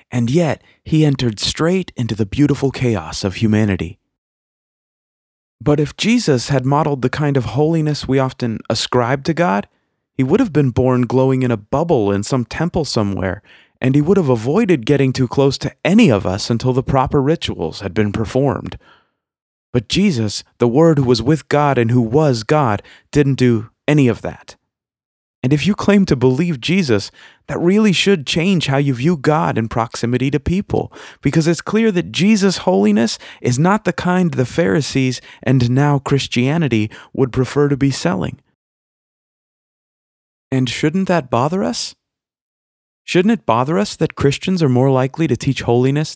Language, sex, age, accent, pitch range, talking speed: English, male, 30-49, American, 120-165 Hz, 170 wpm